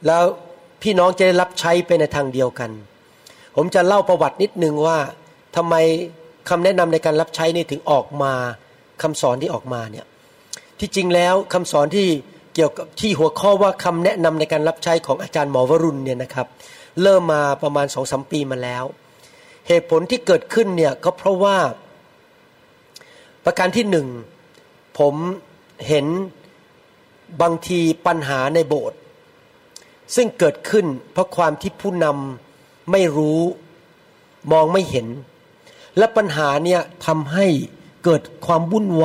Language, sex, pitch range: Thai, male, 150-190 Hz